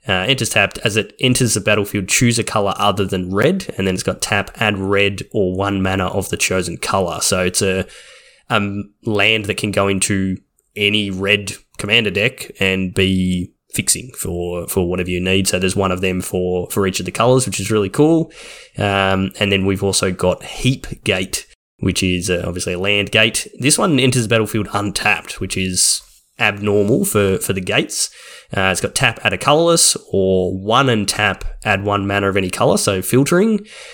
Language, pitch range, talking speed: English, 95-105 Hz, 195 wpm